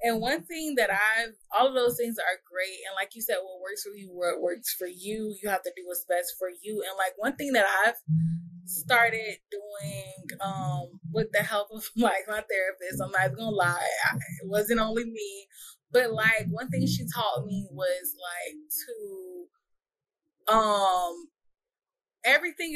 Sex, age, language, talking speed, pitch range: female, 20-39, English, 180 wpm, 185-225 Hz